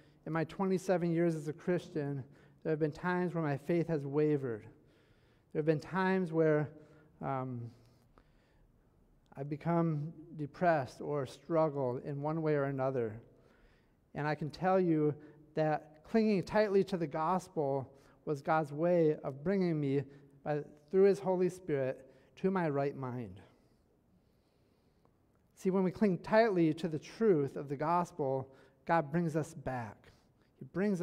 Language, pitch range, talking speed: English, 140-175 Hz, 145 wpm